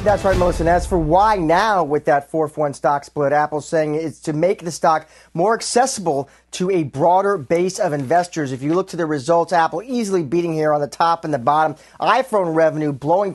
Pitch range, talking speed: 155-185 Hz, 210 wpm